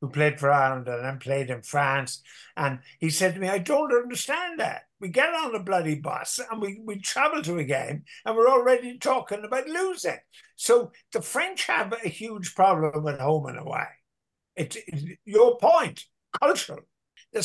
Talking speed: 185 wpm